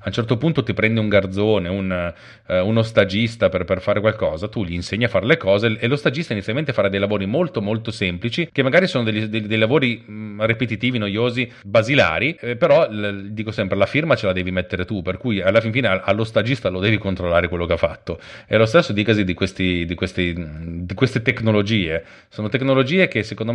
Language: Italian